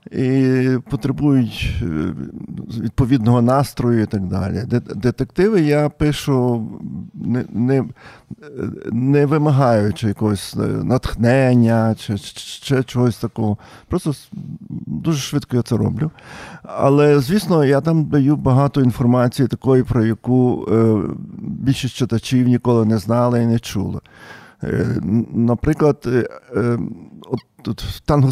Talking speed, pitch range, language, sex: 100 wpm, 120-150 Hz, Ukrainian, male